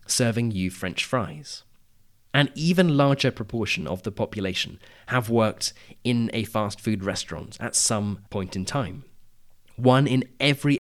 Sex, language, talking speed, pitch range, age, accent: male, English, 140 wpm, 100-125 Hz, 30-49, British